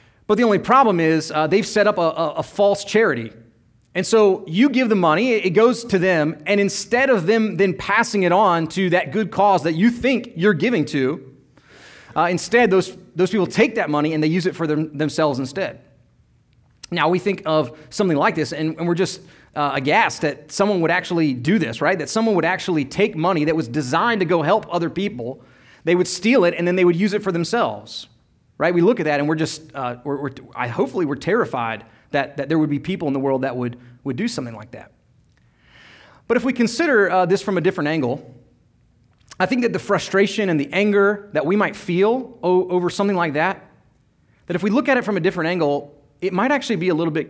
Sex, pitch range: male, 150-205 Hz